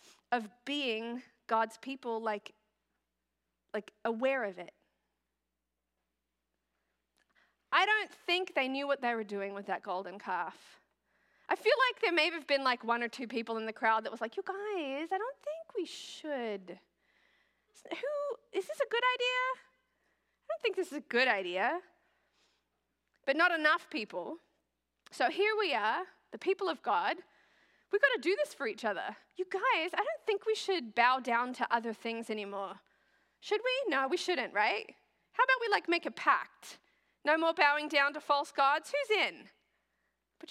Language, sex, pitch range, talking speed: English, female, 230-370 Hz, 175 wpm